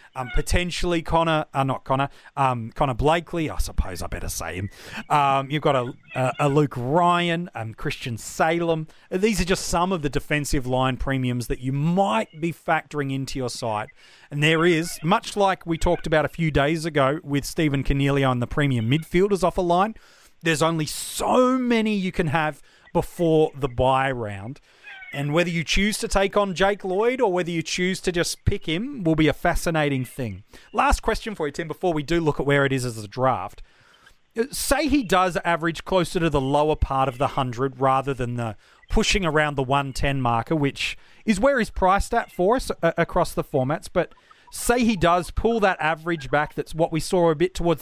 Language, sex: English, male